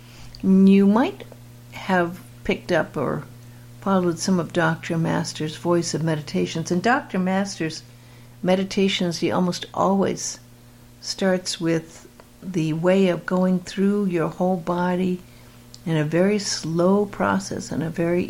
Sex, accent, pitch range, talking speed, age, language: female, American, 140-190 Hz, 130 wpm, 60-79, English